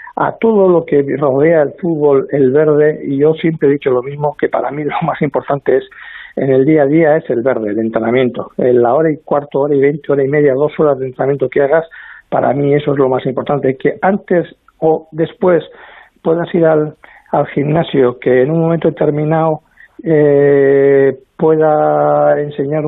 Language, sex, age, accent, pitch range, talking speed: Spanish, male, 50-69, Spanish, 130-155 Hz, 195 wpm